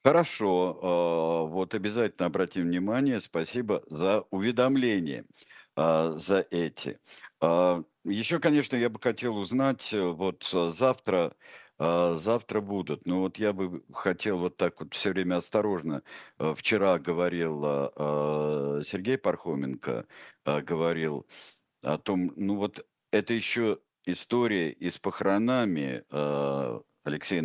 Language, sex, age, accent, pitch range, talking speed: Russian, male, 50-69, native, 80-105 Hz, 105 wpm